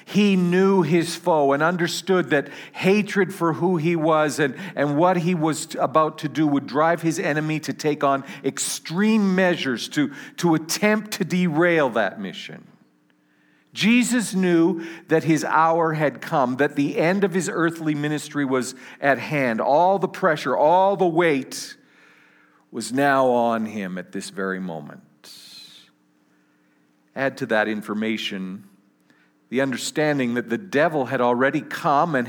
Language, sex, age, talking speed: English, male, 50-69, 150 wpm